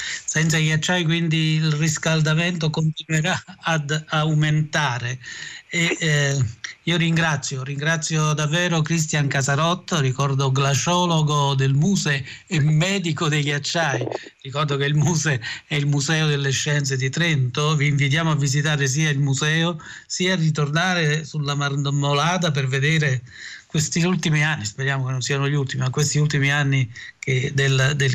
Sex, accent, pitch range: male, native, 140-160 Hz